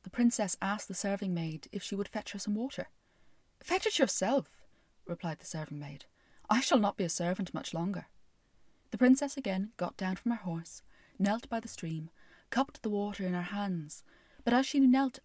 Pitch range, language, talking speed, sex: 175-220 Hz, English, 195 wpm, female